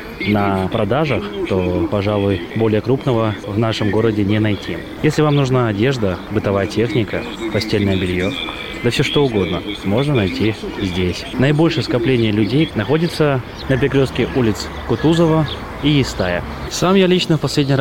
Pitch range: 100-125 Hz